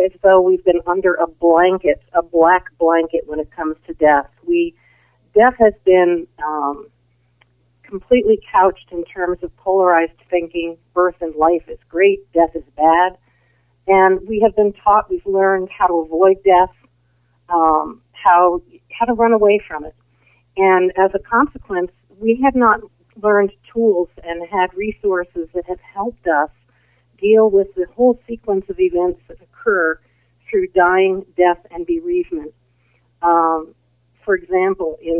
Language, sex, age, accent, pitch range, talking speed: English, female, 50-69, American, 160-190 Hz, 150 wpm